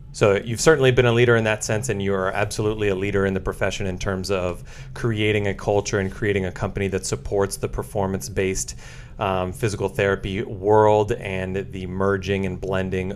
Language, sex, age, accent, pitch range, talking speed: English, male, 30-49, American, 100-120 Hz, 180 wpm